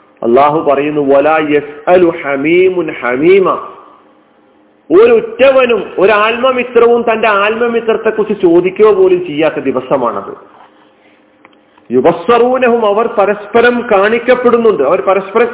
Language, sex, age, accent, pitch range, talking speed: Malayalam, male, 40-59, native, 190-255 Hz, 60 wpm